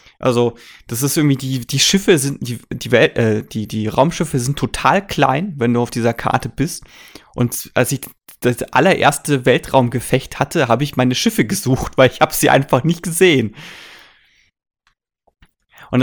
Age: 20-39